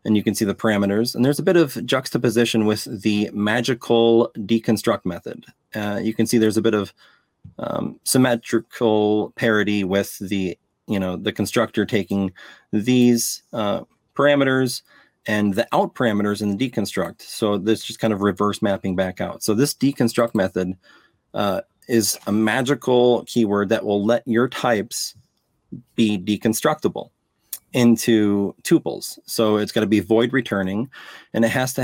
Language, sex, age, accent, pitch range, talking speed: English, male, 30-49, American, 105-120 Hz, 155 wpm